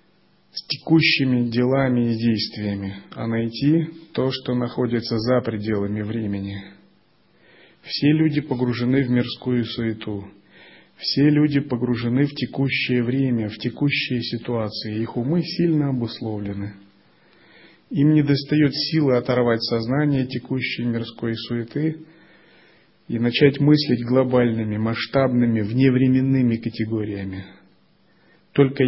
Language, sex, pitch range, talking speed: Russian, male, 110-135 Hz, 100 wpm